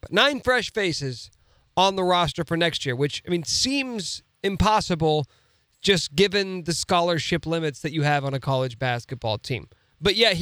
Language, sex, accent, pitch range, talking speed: English, male, American, 130-180 Hz, 165 wpm